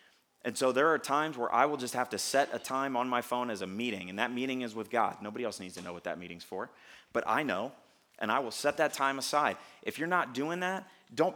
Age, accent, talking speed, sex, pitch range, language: 30-49, American, 270 wpm, male, 115-145 Hz, English